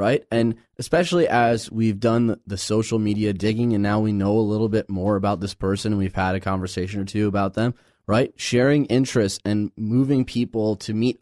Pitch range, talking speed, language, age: 105-125 Hz, 205 wpm, English, 20-39